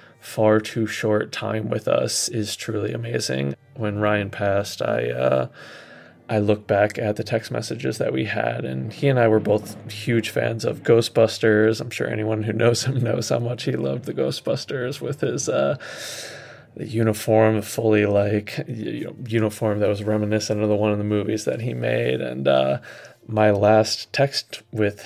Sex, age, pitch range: male, 20-39, 105-115 Hz